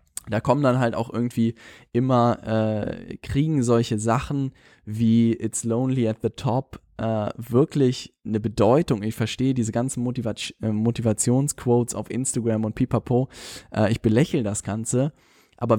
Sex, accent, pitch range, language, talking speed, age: male, German, 105-125 Hz, German, 135 wpm, 10-29